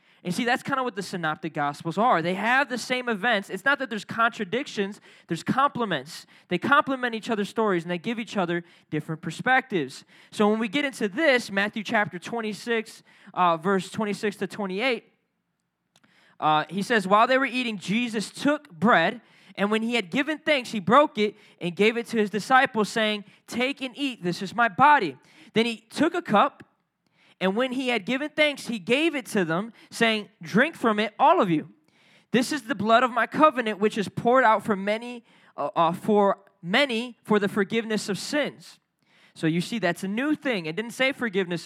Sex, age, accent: male, 20-39, American